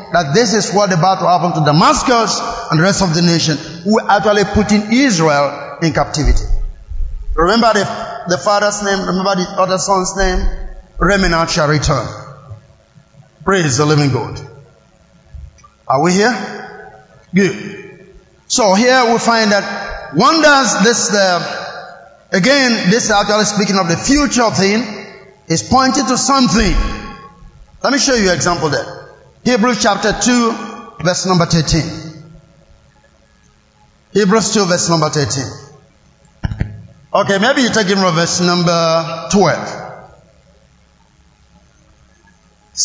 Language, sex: English, male